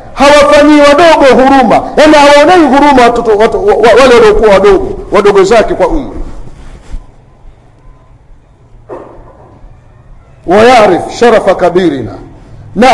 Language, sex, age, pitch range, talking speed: Swahili, male, 50-69, 220-315 Hz, 80 wpm